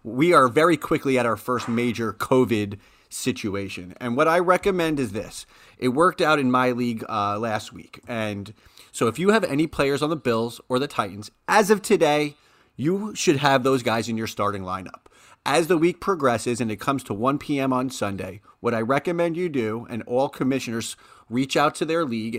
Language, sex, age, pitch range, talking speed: English, male, 30-49, 115-165 Hz, 200 wpm